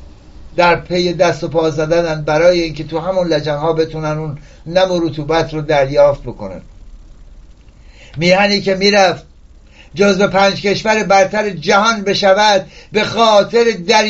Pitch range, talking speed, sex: 185-230 Hz, 135 wpm, male